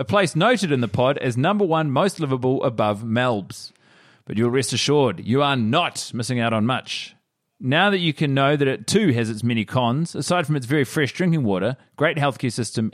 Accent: Australian